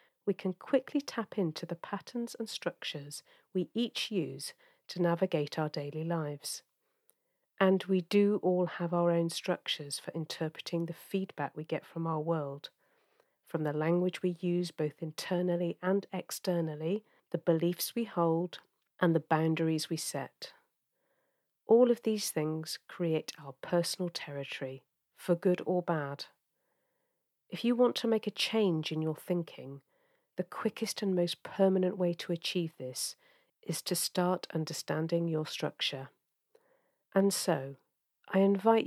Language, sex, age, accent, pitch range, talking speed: English, female, 40-59, British, 160-215 Hz, 145 wpm